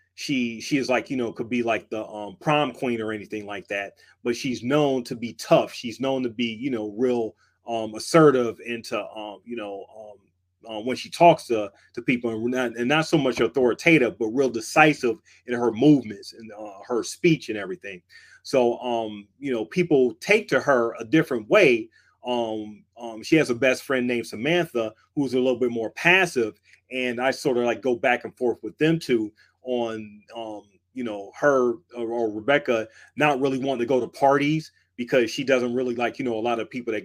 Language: English